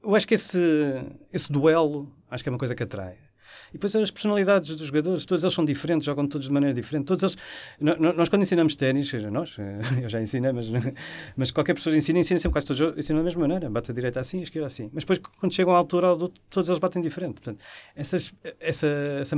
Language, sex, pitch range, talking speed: Portuguese, male, 120-160 Hz, 225 wpm